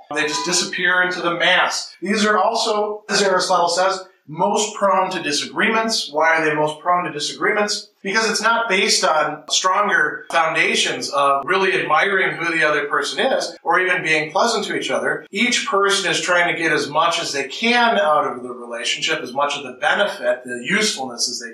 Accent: American